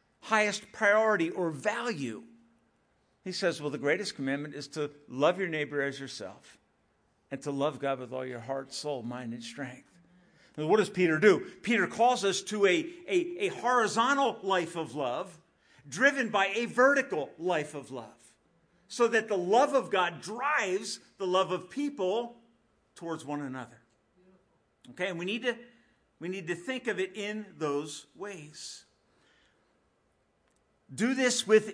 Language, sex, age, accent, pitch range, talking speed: English, male, 50-69, American, 150-230 Hz, 155 wpm